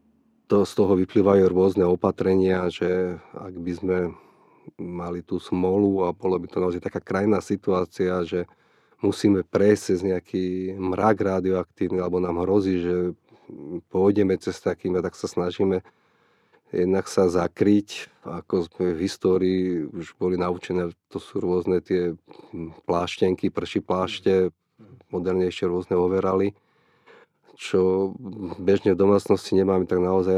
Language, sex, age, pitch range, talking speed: Slovak, male, 30-49, 90-95 Hz, 130 wpm